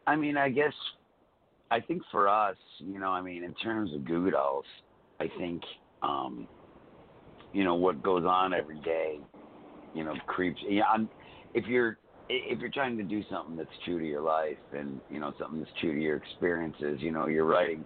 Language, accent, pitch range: English, American, 75-90 Hz